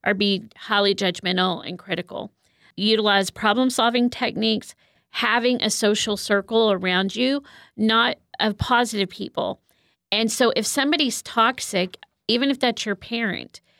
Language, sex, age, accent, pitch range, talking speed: English, female, 40-59, American, 195-240 Hz, 125 wpm